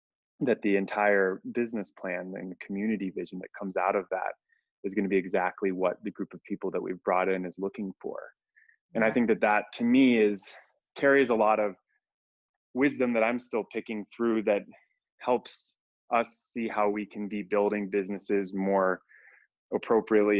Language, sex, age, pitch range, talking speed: English, male, 20-39, 100-120 Hz, 180 wpm